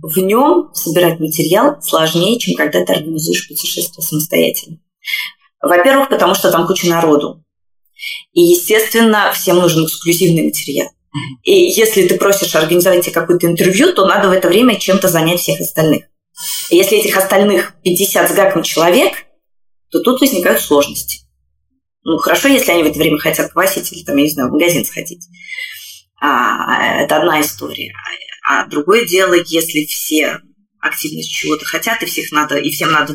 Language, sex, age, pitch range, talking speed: Russian, female, 20-39, 155-200 Hz, 150 wpm